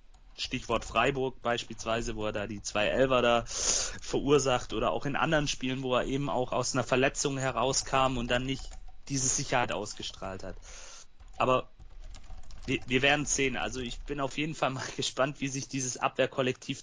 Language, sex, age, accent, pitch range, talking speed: German, male, 30-49, German, 110-135 Hz, 170 wpm